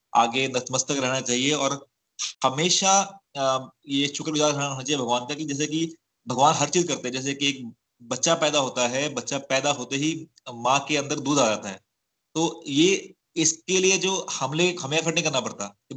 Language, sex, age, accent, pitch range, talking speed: Hindi, male, 30-49, native, 130-160 Hz, 185 wpm